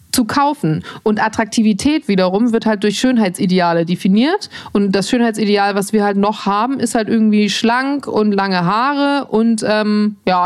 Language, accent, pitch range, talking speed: German, German, 205-250 Hz, 160 wpm